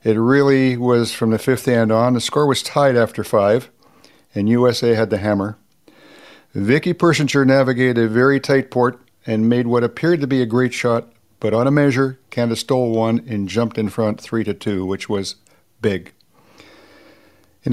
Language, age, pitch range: English, 50-69, 110-135 Hz